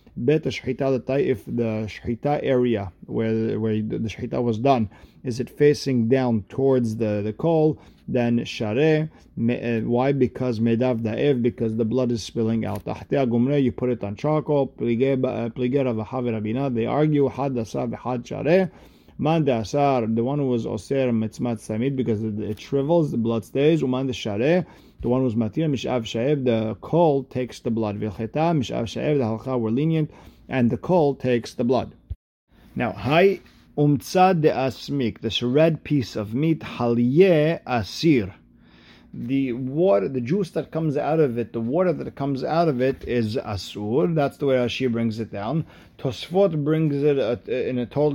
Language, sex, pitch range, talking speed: English, male, 115-145 Hz, 150 wpm